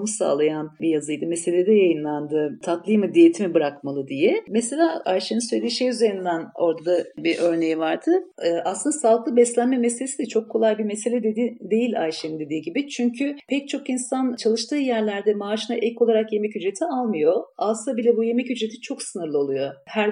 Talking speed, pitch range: 165 wpm, 175-245 Hz